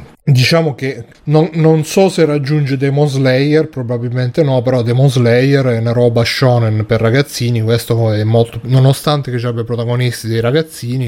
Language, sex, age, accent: Italian, male, 30-49, native